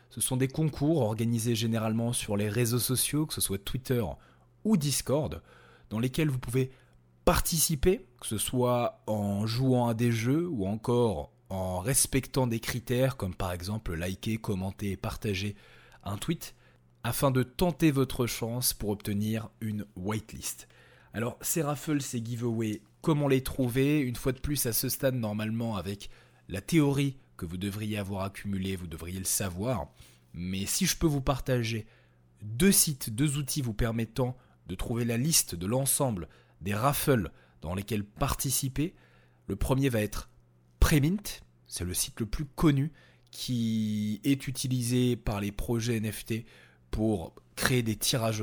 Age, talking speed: 20-39, 155 wpm